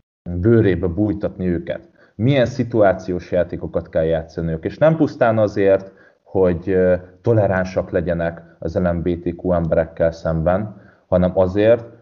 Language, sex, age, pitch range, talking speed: Hungarian, male, 30-49, 85-110 Hz, 105 wpm